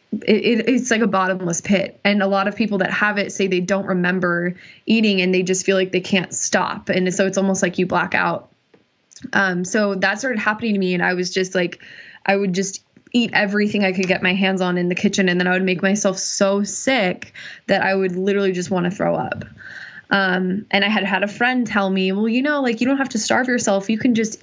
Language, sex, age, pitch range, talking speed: English, female, 20-39, 190-215 Hz, 250 wpm